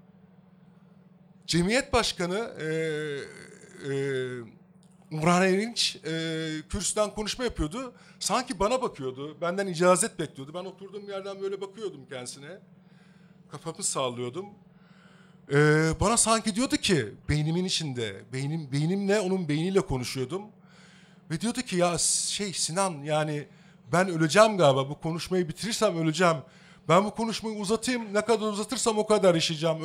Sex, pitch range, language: male, 155-195 Hz, Turkish